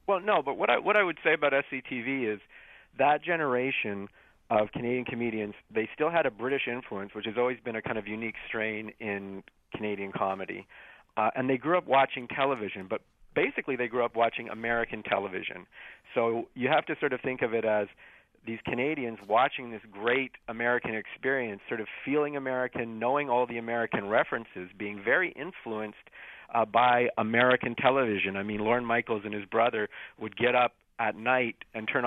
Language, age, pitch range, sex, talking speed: English, 50-69, 105-125 Hz, male, 180 wpm